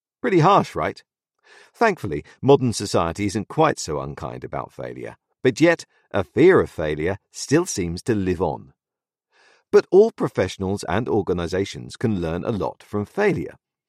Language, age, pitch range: English, 50-69, 95-150 Hz